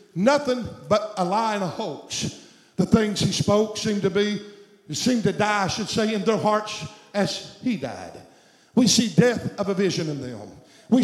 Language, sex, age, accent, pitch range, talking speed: English, male, 50-69, American, 195-230 Hz, 190 wpm